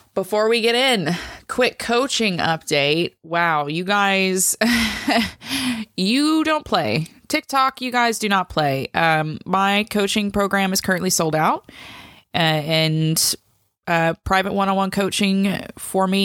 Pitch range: 155-195 Hz